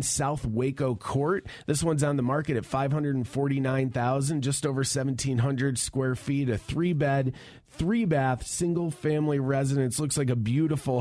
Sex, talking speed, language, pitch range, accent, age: male, 145 wpm, English, 125-145 Hz, American, 30-49